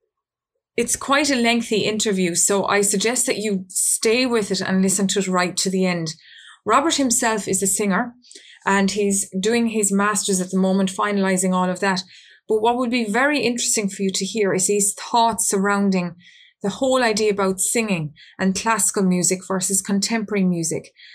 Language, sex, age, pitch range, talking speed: English, female, 20-39, 185-220 Hz, 180 wpm